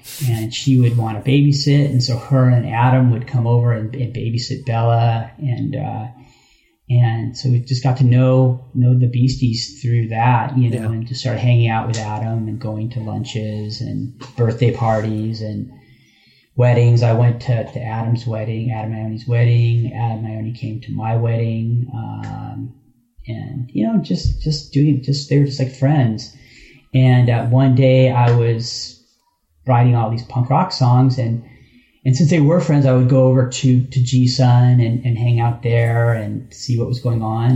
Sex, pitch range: male, 115-130 Hz